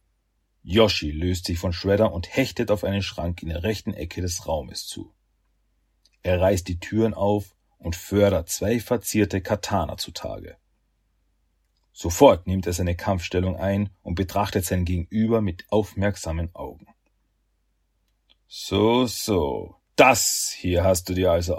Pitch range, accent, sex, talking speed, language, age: 85-100 Hz, German, male, 135 wpm, German, 40-59